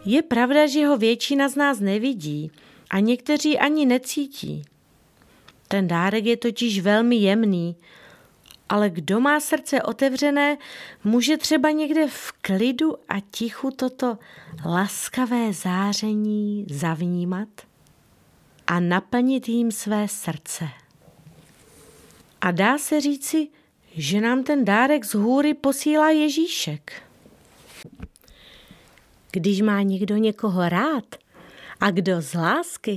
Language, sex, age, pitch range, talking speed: Czech, female, 30-49, 190-265 Hz, 110 wpm